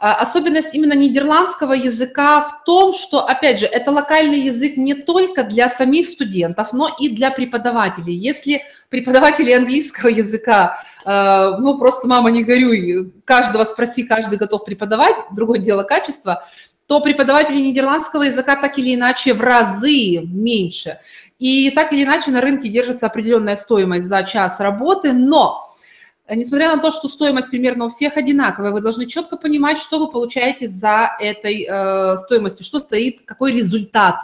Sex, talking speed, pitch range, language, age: female, 150 wpm, 220-285 Hz, Russian, 20-39